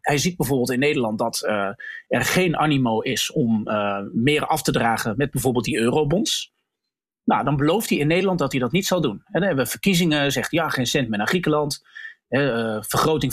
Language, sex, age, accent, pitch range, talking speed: Dutch, male, 40-59, Dutch, 130-175 Hz, 215 wpm